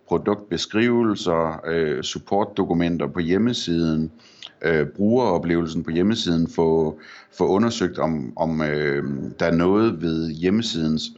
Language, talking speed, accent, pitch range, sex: Danish, 80 wpm, native, 80-100 Hz, male